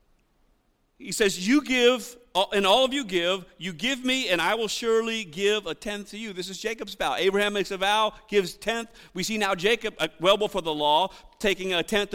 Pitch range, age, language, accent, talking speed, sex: 200-250 Hz, 50-69, English, American, 205 wpm, male